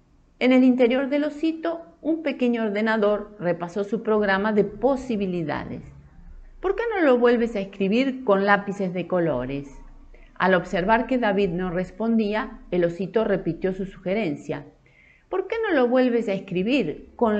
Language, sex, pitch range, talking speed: Spanish, female, 175-255 Hz, 150 wpm